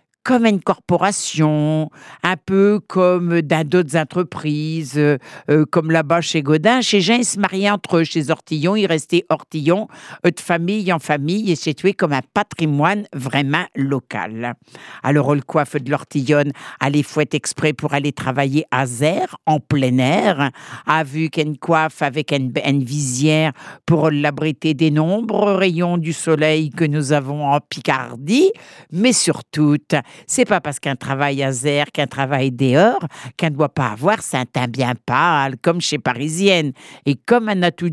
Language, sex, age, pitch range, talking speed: French, female, 60-79, 140-175 Hz, 165 wpm